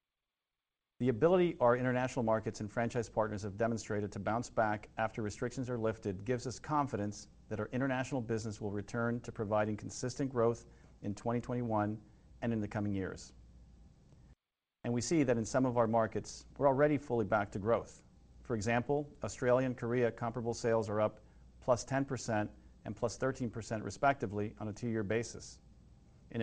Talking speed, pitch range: 165 wpm, 105-125 Hz